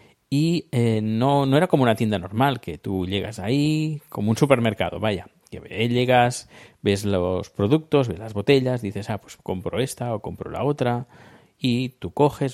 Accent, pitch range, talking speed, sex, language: Spanish, 110-140 Hz, 170 wpm, male, Spanish